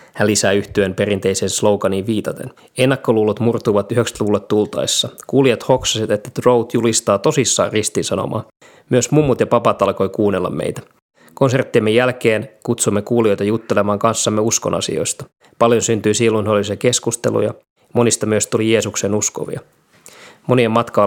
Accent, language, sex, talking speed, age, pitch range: native, Finnish, male, 120 wpm, 20-39, 105-120 Hz